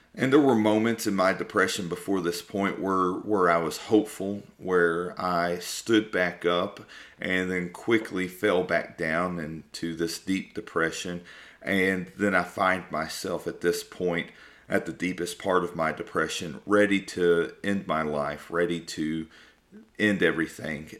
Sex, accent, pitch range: male, American, 85-105 Hz